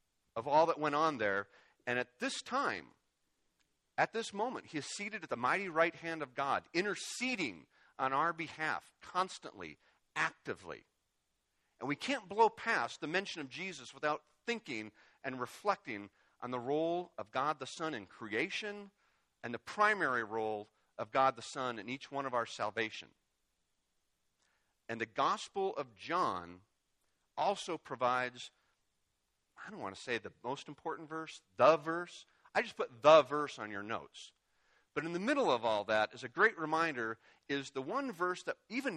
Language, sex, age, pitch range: English, male, 40-59, 120-190 Hz